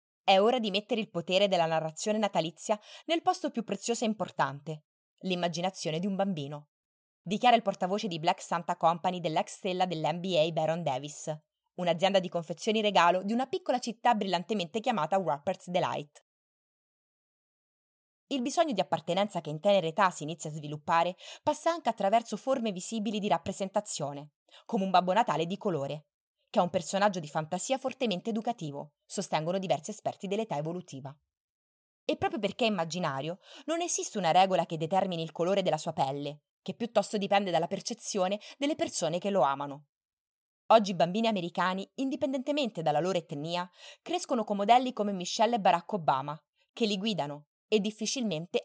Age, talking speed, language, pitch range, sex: 20-39, 160 wpm, Italian, 165-225 Hz, female